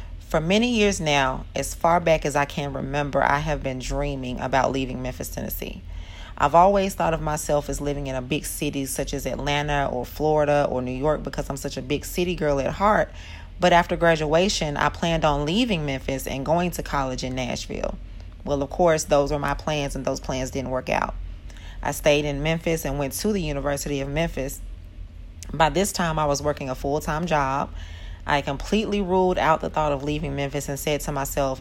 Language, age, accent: English, 40-59, American